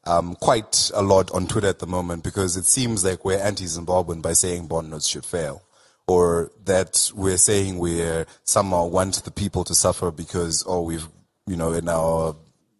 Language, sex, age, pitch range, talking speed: English, male, 30-49, 85-100 Hz, 185 wpm